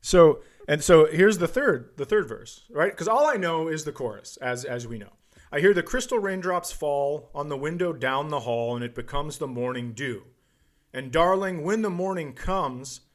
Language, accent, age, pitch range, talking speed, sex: English, American, 40-59, 130-180 Hz, 205 wpm, male